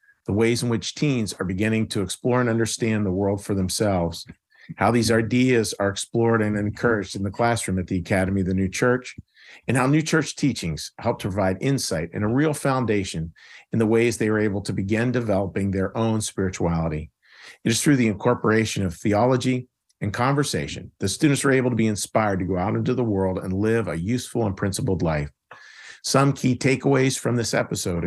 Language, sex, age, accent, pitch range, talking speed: English, male, 50-69, American, 95-125 Hz, 195 wpm